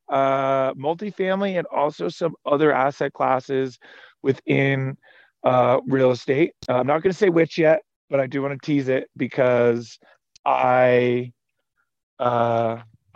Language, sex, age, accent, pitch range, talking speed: English, male, 40-59, American, 125-160 Hz, 135 wpm